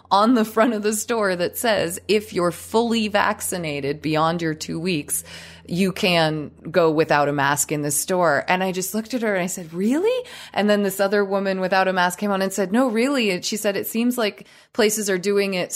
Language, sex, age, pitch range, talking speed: English, female, 30-49, 170-215 Hz, 225 wpm